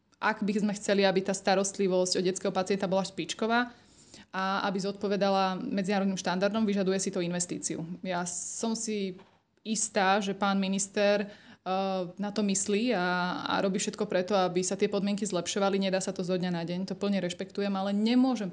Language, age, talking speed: Slovak, 20-39, 175 wpm